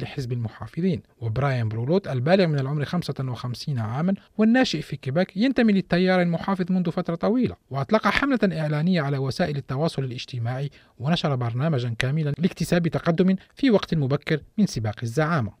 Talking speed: 140 wpm